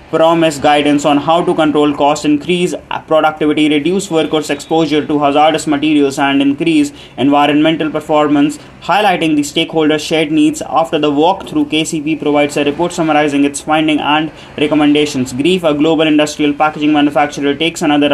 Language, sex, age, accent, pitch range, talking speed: English, male, 20-39, Indian, 145-160 Hz, 145 wpm